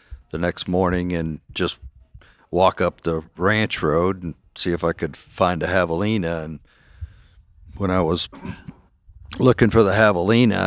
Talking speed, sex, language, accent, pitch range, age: 145 wpm, male, English, American, 85-100 Hz, 60-79